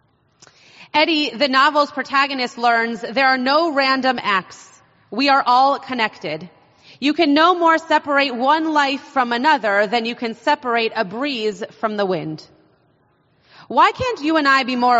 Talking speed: 155 wpm